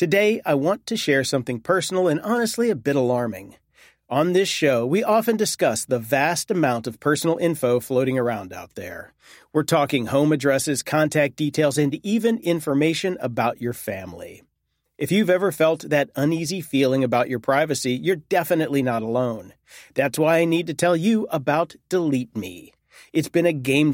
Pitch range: 130-170 Hz